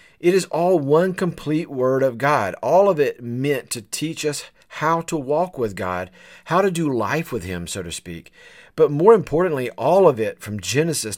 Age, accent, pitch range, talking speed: 40-59, American, 110-155 Hz, 200 wpm